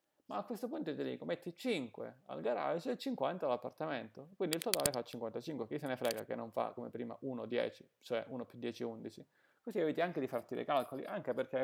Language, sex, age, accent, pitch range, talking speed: Italian, male, 30-49, native, 125-160 Hz, 220 wpm